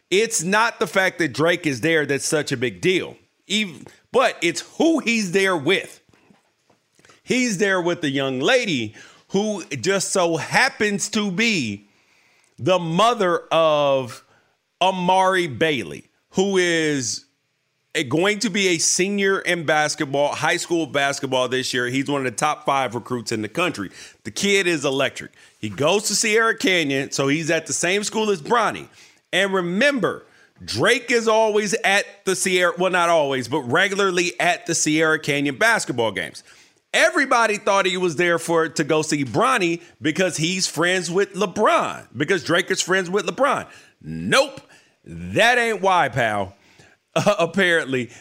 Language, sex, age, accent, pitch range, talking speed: English, male, 40-59, American, 145-195 Hz, 155 wpm